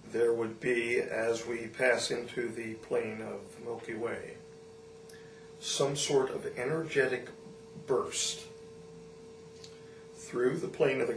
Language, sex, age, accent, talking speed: English, male, 50-69, American, 125 wpm